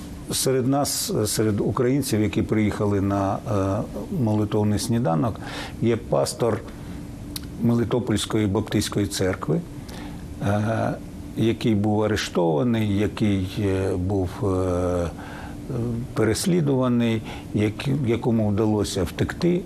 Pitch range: 100-135 Hz